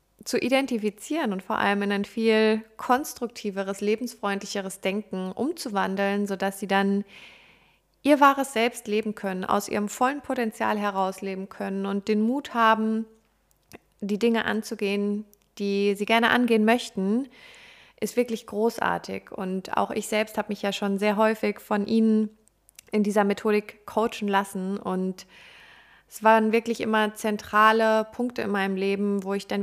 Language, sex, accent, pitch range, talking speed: German, female, German, 195-225 Hz, 145 wpm